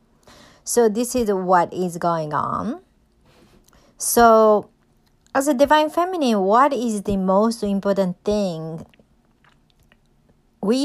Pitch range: 180-220 Hz